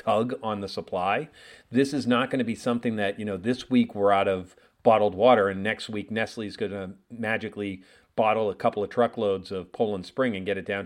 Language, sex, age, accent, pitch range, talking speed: English, male, 40-59, American, 100-120 Hz, 220 wpm